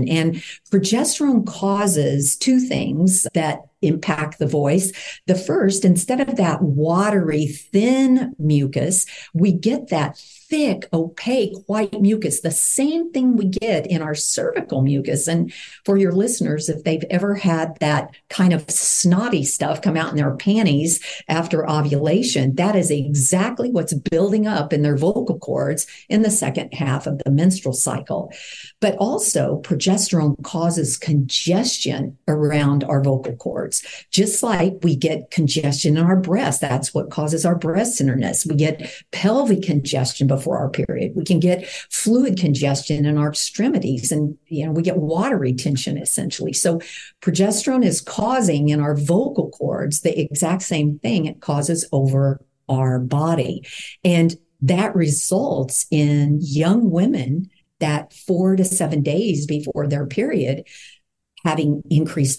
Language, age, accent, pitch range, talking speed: English, 50-69, American, 150-190 Hz, 145 wpm